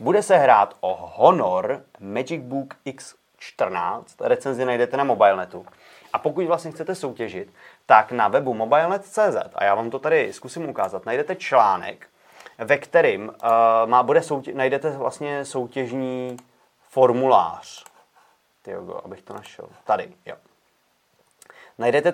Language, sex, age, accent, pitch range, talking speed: Czech, male, 30-49, native, 120-135 Hz, 125 wpm